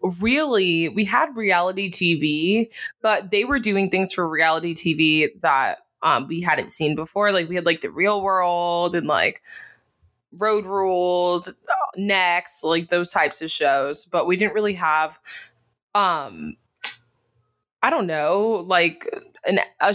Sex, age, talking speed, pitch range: female, 20-39, 140 wpm, 160-200 Hz